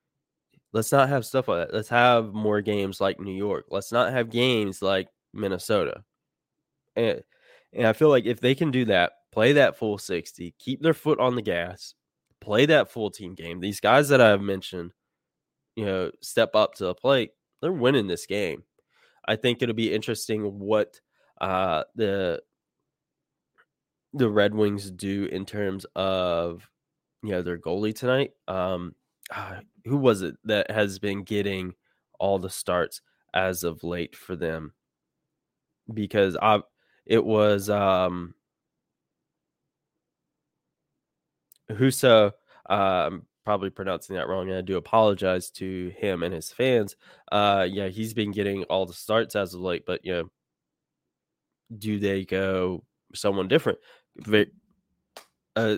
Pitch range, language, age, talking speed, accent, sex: 95-115 Hz, English, 20-39, 150 wpm, American, male